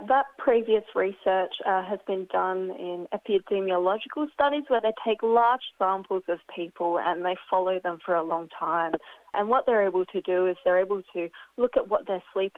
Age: 30-49